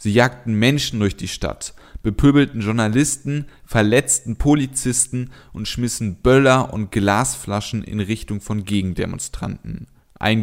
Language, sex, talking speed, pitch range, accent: German, male, 115 wpm, 105-130 Hz, German